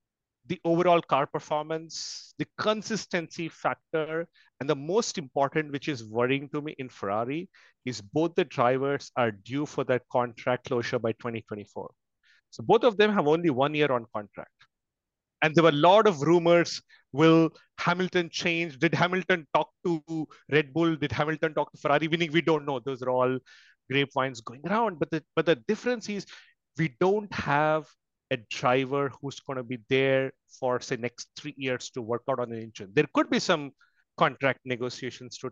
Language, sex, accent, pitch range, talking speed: English, male, Indian, 130-170 Hz, 175 wpm